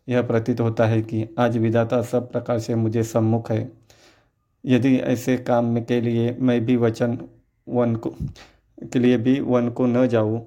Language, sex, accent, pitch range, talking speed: Hindi, male, native, 115-125 Hz, 180 wpm